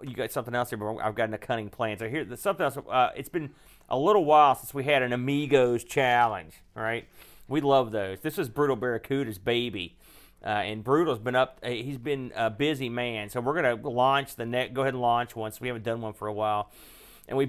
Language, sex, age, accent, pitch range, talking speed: English, male, 40-59, American, 110-135 Hz, 235 wpm